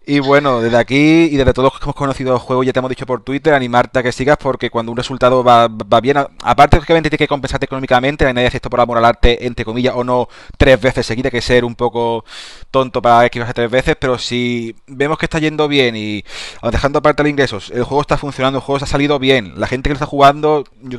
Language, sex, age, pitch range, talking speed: Spanish, male, 30-49, 115-135 Hz, 255 wpm